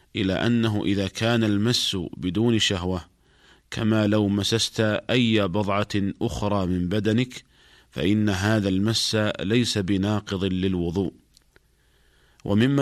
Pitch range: 95-110 Hz